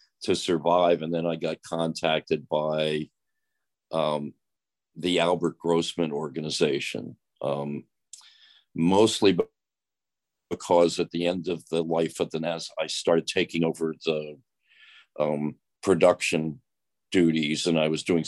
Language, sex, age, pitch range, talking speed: English, male, 50-69, 80-85 Hz, 125 wpm